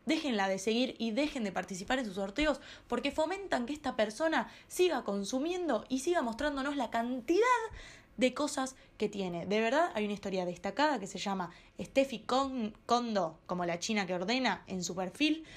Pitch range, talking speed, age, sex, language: 200-270 Hz, 175 wpm, 20-39, female, Spanish